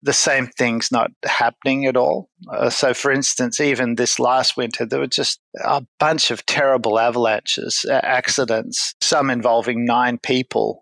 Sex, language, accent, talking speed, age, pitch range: male, English, Australian, 160 wpm, 50-69, 115-130 Hz